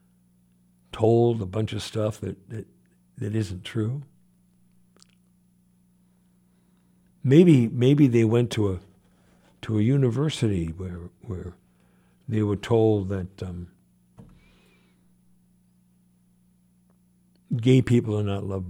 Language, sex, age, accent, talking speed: English, male, 60-79, American, 100 wpm